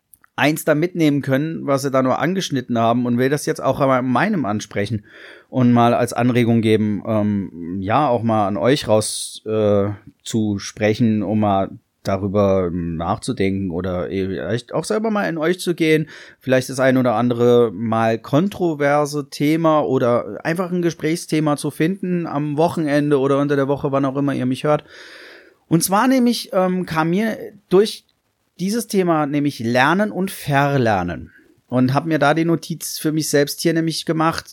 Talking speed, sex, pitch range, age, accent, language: 170 wpm, male, 115-165 Hz, 30-49, German, German